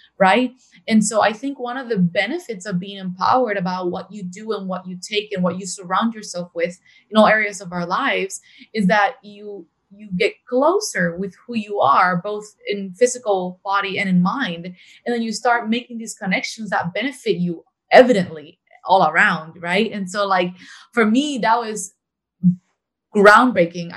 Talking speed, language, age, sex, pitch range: 180 wpm, English, 20-39, female, 180-215 Hz